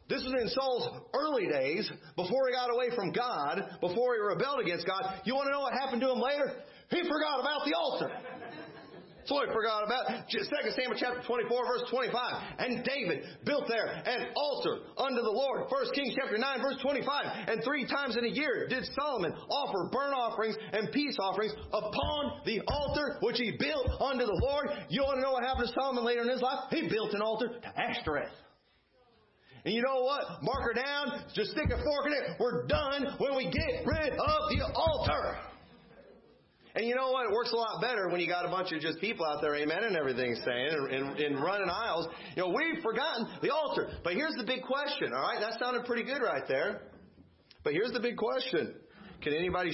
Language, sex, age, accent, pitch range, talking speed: English, male, 40-59, American, 195-275 Hz, 210 wpm